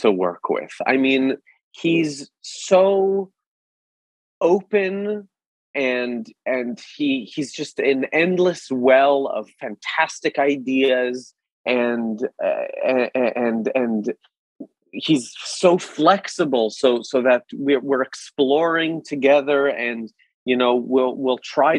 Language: English